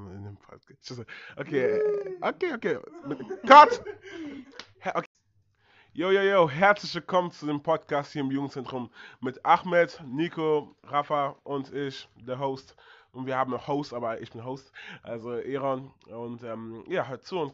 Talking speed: 150 wpm